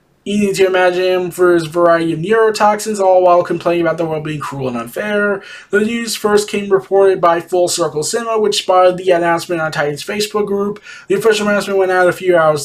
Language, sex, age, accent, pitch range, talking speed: English, male, 20-39, American, 175-220 Hz, 210 wpm